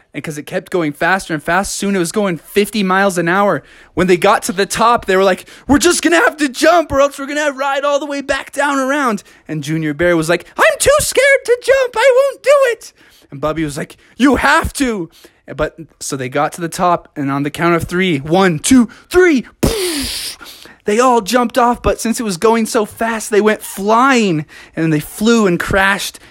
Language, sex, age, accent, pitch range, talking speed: English, male, 20-39, American, 150-230 Hz, 230 wpm